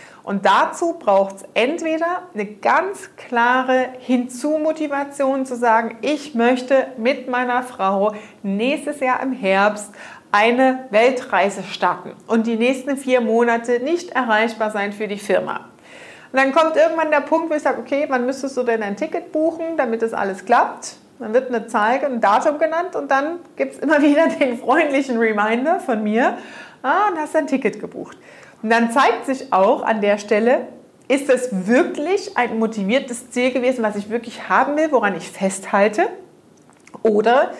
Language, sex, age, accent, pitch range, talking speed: German, female, 40-59, German, 220-285 Hz, 165 wpm